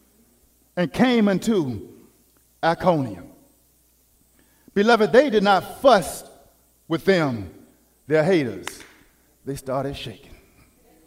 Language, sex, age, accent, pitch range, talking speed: English, male, 50-69, American, 205-275 Hz, 85 wpm